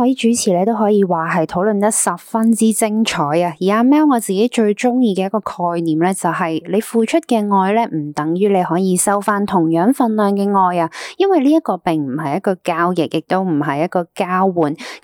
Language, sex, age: Chinese, female, 20-39